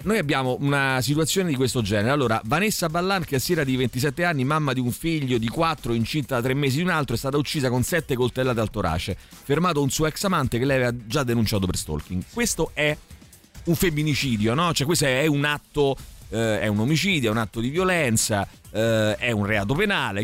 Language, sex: Italian, male